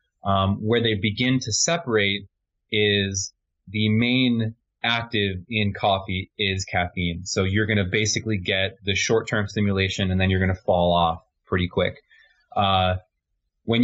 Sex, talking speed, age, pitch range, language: male, 150 wpm, 20-39, 95-110 Hz, English